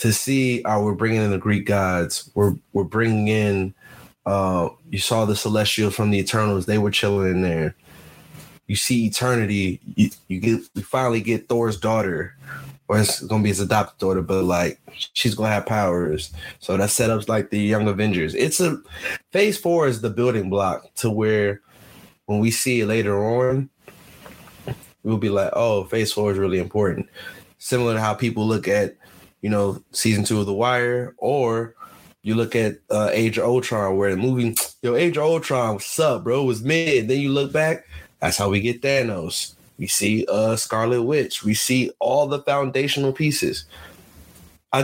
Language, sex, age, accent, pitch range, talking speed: English, male, 20-39, American, 100-125 Hz, 185 wpm